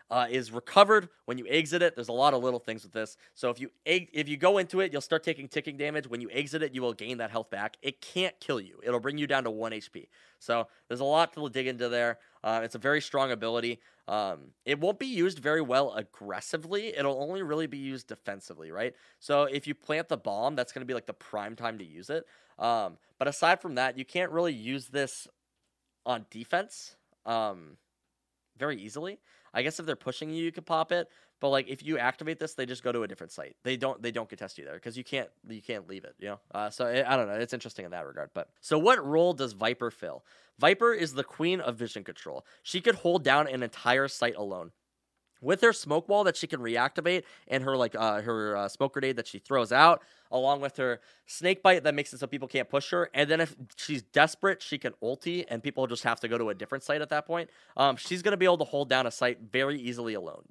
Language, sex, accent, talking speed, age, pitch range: English, male, American, 250 wpm, 20-39, 120-160 Hz